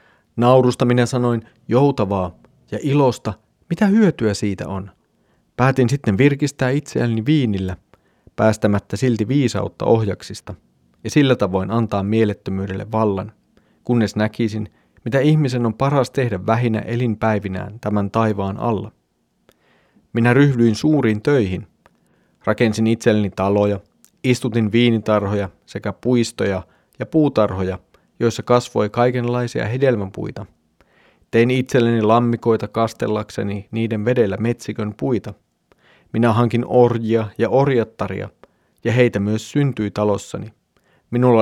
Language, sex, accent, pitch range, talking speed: Finnish, male, native, 105-125 Hz, 105 wpm